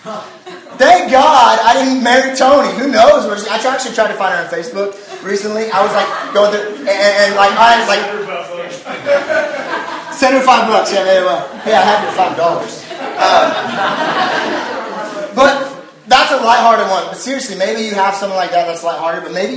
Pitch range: 200-250 Hz